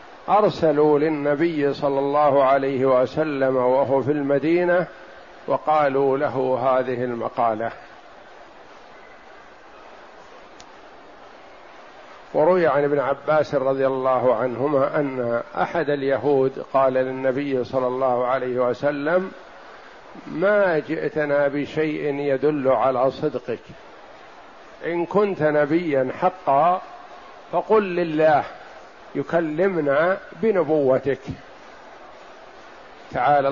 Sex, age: male, 50-69